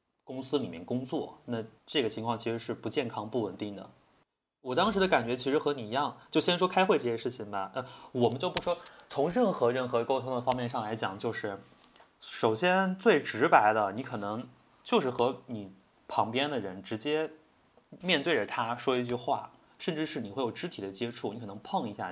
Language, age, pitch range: Chinese, 20-39, 115-150 Hz